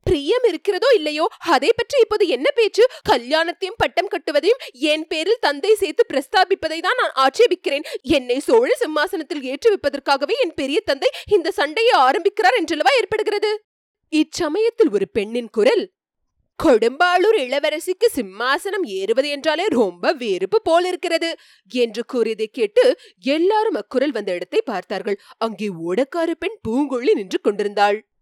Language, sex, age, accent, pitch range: Tamil, female, 30-49, native, 255-420 Hz